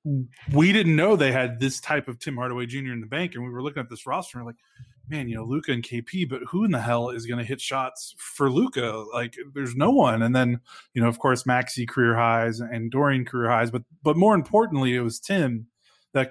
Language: English